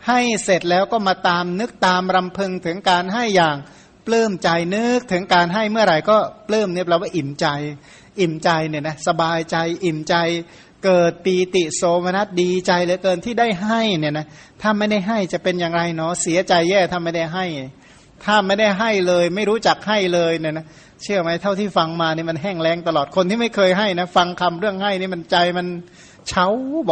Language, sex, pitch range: Thai, male, 165-200 Hz